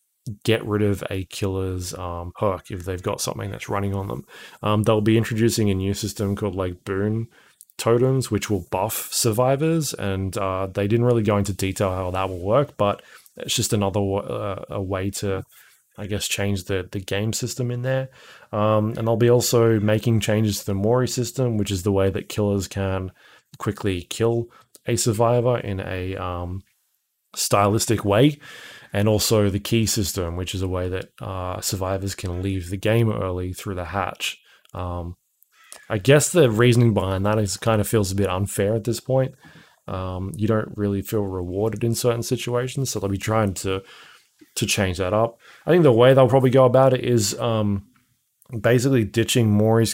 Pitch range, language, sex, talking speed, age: 95-115 Hz, English, male, 185 wpm, 20-39